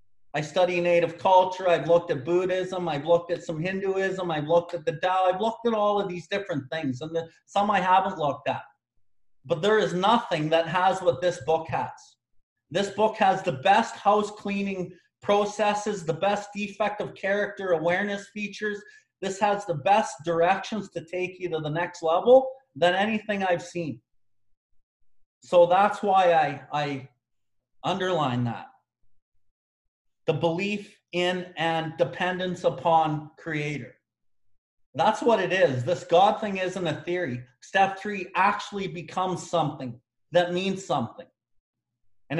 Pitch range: 140-190 Hz